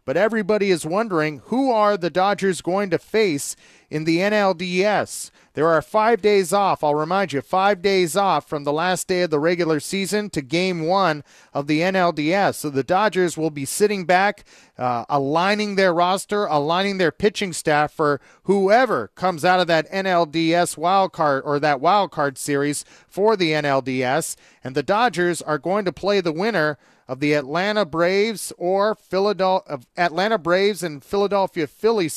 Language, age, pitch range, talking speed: English, 40-59, 150-195 Hz, 170 wpm